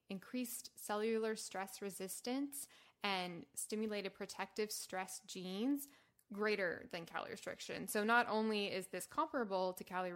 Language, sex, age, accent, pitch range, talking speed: English, female, 20-39, American, 185-235 Hz, 125 wpm